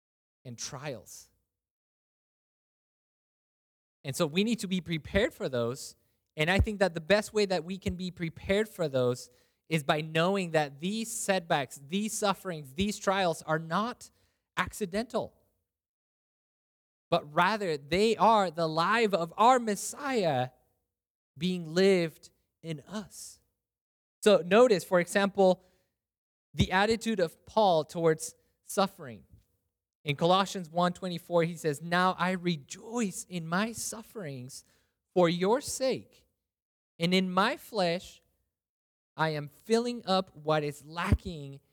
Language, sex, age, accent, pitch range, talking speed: English, male, 20-39, American, 125-195 Hz, 125 wpm